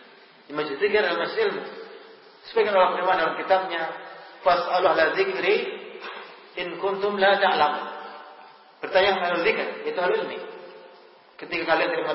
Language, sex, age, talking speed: Indonesian, male, 40-59, 130 wpm